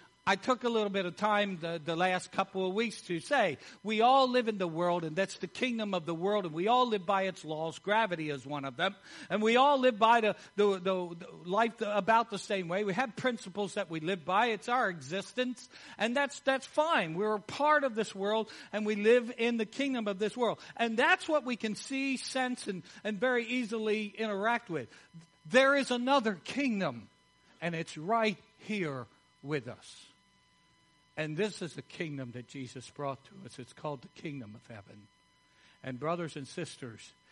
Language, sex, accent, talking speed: English, male, American, 200 wpm